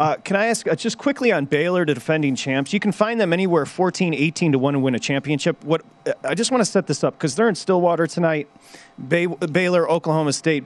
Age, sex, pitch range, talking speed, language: 30-49, male, 145-170 Hz, 235 wpm, English